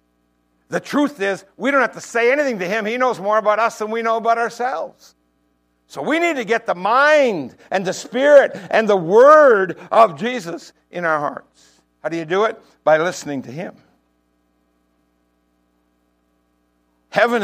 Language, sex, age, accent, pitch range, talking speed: English, male, 60-79, American, 140-235 Hz, 170 wpm